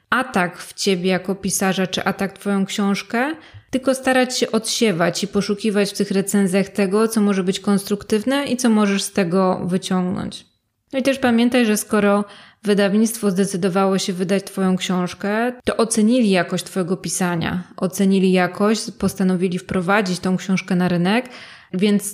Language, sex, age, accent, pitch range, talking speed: Polish, female, 20-39, native, 185-210 Hz, 150 wpm